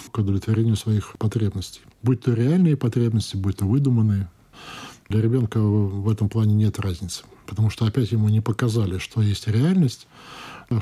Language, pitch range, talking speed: Russian, 105-125 Hz, 155 wpm